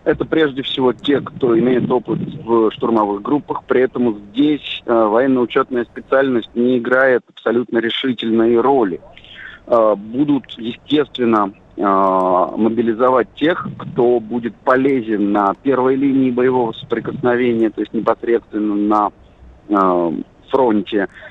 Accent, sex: native, male